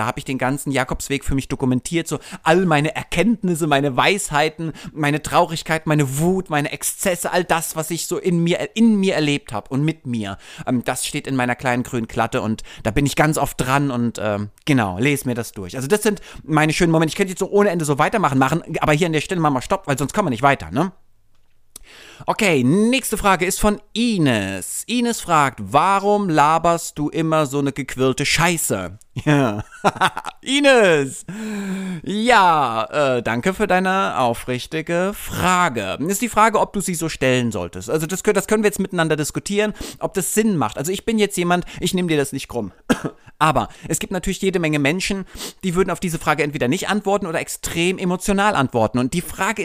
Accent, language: German, German